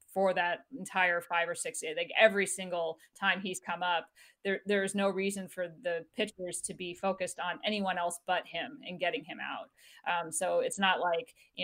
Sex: female